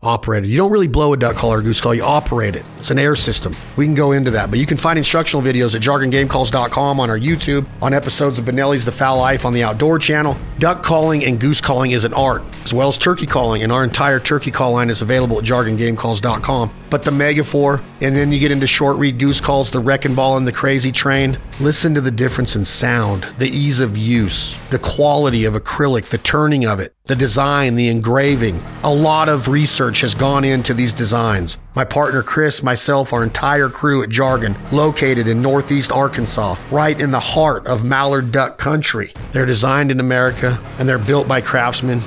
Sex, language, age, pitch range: male, English, 40-59, 120-140 Hz